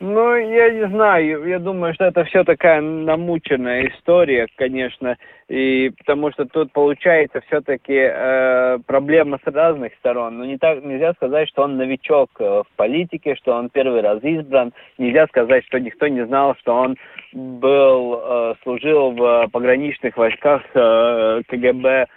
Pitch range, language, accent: 135-165 Hz, Russian, native